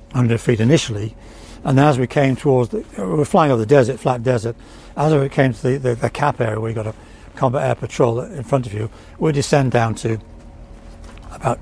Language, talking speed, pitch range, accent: English, 205 wpm, 110-140 Hz, British